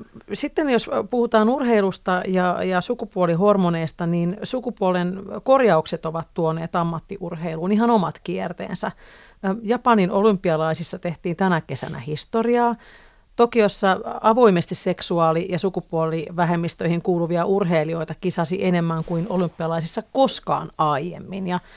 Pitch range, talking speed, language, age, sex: 170-205 Hz, 95 wpm, Finnish, 40-59, female